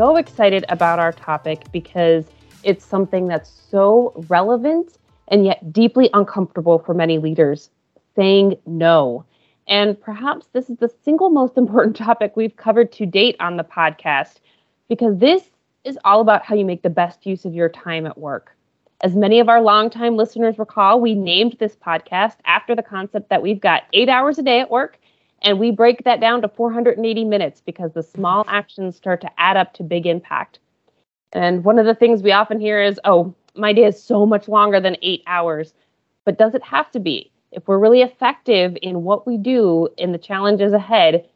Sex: female